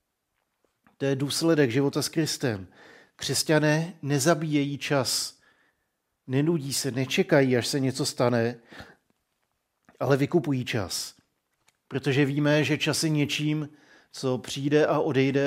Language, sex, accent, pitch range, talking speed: Czech, male, native, 130-150 Hz, 115 wpm